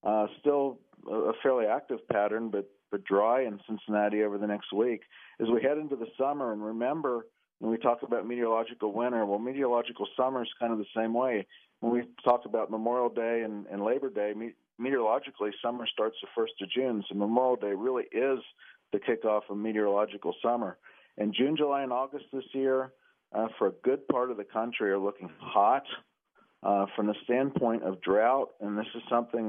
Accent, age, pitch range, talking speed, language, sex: American, 40-59, 105-125 Hz, 190 wpm, English, male